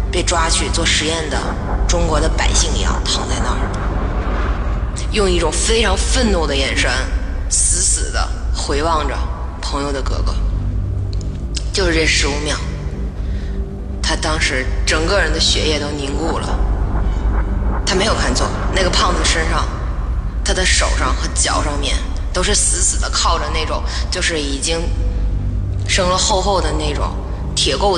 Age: 20-39